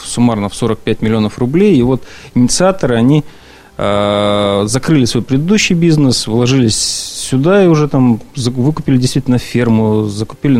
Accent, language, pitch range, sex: native, Russian, 115-145 Hz, male